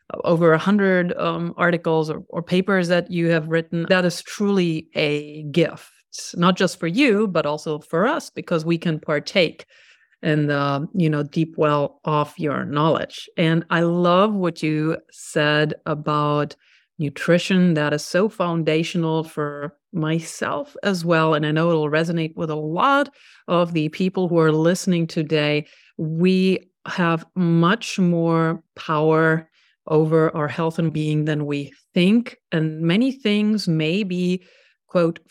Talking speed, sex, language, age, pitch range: 145 wpm, female, English, 50-69, 155-185 Hz